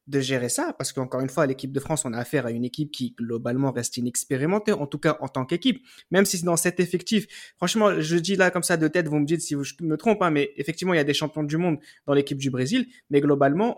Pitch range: 140-190 Hz